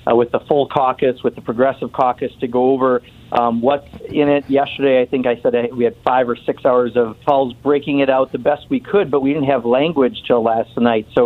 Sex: male